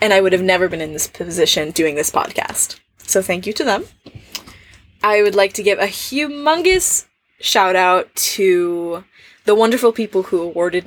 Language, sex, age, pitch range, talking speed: English, female, 10-29, 170-210 Hz, 175 wpm